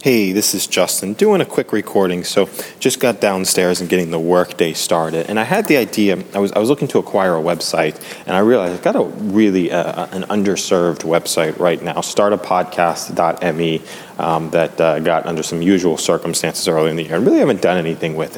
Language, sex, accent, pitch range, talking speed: English, male, American, 85-105 Hz, 205 wpm